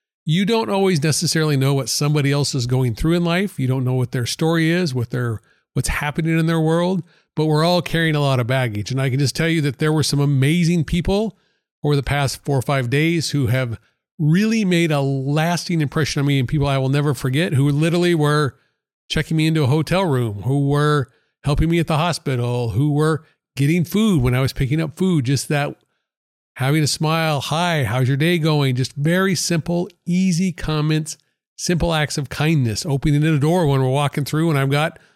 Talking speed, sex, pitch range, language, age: 210 wpm, male, 135-165 Hz, English, 40-59